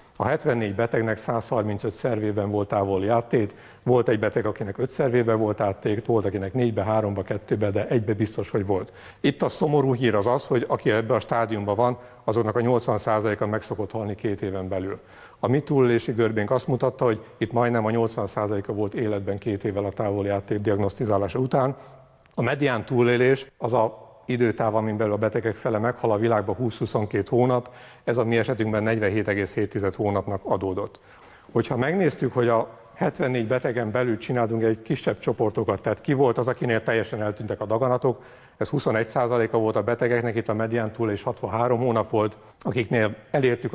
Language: Hungarian